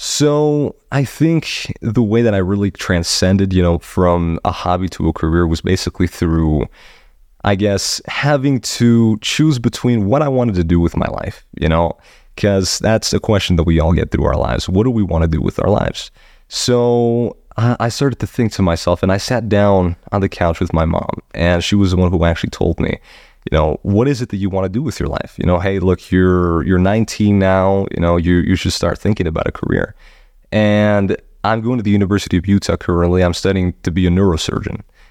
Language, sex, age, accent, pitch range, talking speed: English, male, 30-49, American, 85-110 Hz, 220 wpm